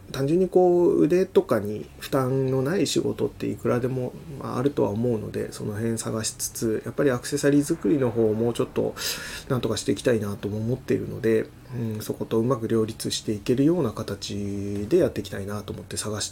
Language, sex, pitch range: Japanese, male, 105-130 Hz